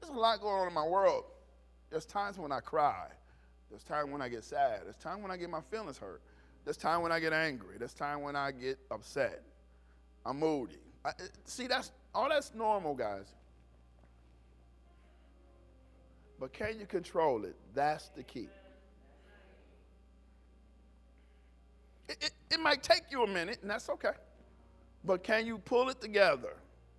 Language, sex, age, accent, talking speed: English, male, 40-59, American, 160 wpm